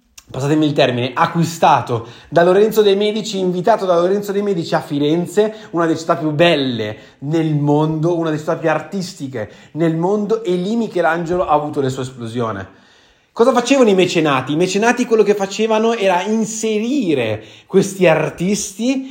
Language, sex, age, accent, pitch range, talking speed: Italian, male, 30-49, native, 150-215 Hz, 155 wpm